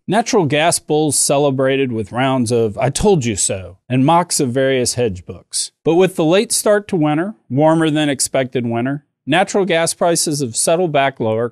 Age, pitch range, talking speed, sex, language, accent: 40-59, 120-170 Hz, 180 wpm, male, English, American